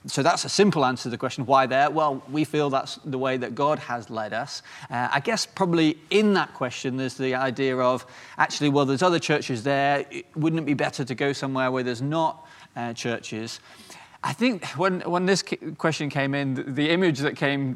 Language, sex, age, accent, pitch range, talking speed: English, male, 30-49, British, 130-160 Hz, 210 wpm